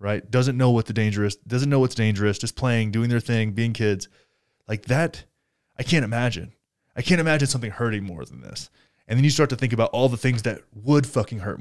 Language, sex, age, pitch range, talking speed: English, male, 20-39, 100-120 Hz, 225 wpm